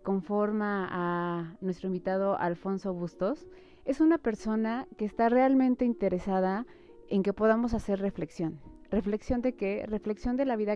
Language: Spanish